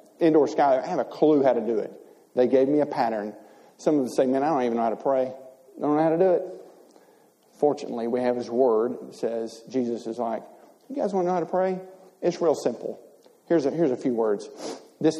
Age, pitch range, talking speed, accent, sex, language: 40-59, 125-180 Hz, 235 wpm, American, male, English